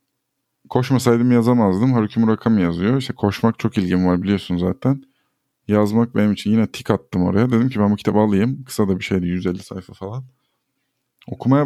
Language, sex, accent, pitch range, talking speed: Turkish, male, native, 100-130 Hz, 175 wpm